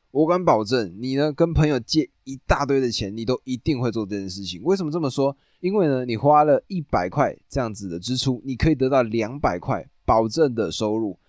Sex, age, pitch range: male, 20-39, 100-135 Hz